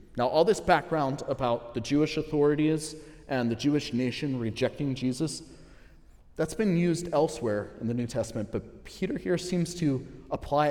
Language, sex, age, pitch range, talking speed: English, male, 30-49, 120-160 Hz, 155 wpm